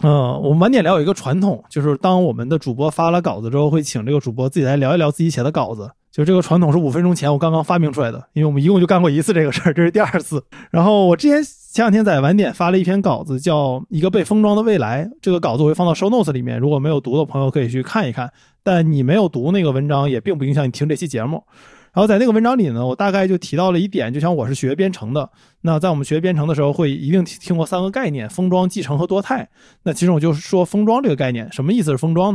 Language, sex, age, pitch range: Chinese, male, 20-39, 145-195 Hz